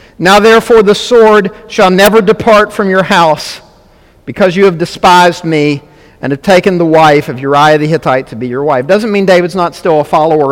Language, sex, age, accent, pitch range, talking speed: English, male, 50-69, American, 140-200 Hz, 200 wpm